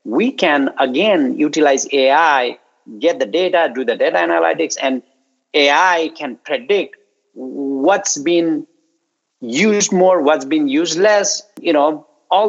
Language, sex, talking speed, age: English, male, 130 wpm, 50-69